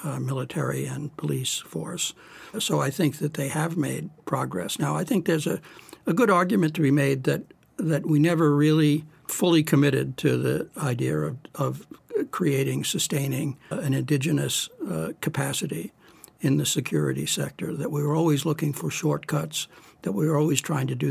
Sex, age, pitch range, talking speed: male, 60-79, 135-160 Hz, 175 wpm